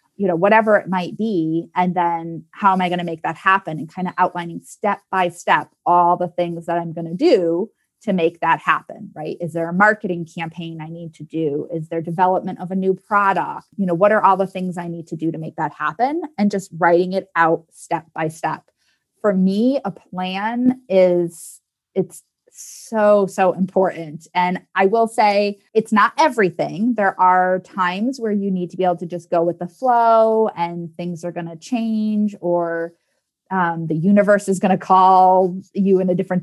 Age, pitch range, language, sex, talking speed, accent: 20-39, 170-205 Hz, English, female, 205 wpm, American